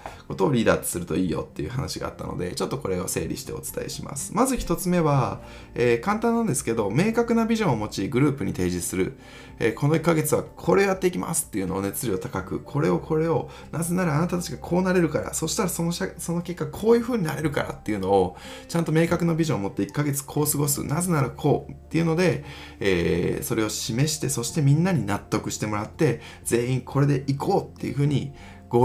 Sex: male